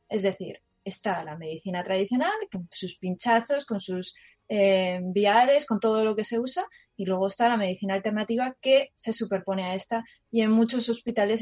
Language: Spanish